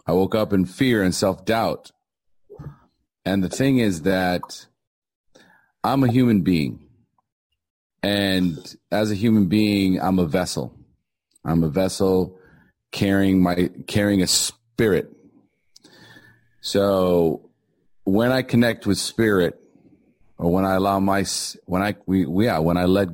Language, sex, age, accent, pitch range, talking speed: English, male, 40-59, American, 90-110 Hz, 130 wpm